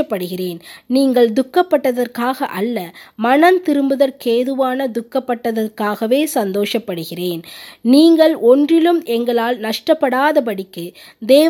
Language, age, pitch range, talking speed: Tamil, 20-39, 210-285 Hz, 55 wpm